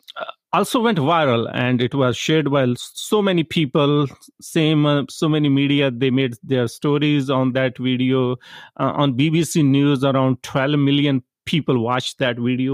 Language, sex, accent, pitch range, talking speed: English, male, Indian, 130-165 Hz, 165 wpm